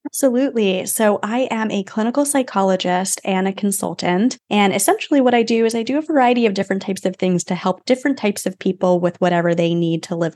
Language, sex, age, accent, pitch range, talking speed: English, female, 20-39, American, 180-225 Hz, 215 wpm